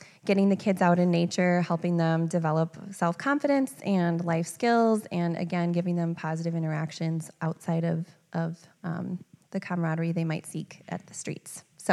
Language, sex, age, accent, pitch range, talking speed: English, female, 20-39, American, 165-195 Hz, 160 wpm